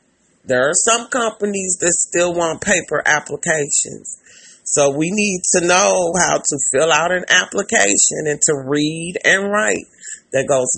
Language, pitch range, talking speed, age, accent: English, 145-180 Hz, 150 wpm, 40-59, American